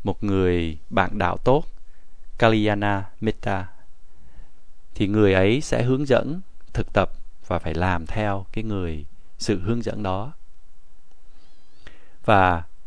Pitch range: 85-115 Hz